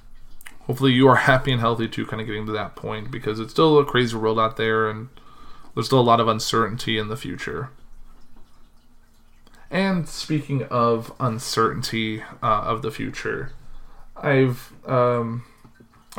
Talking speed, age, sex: 150 wpm, 20-39, male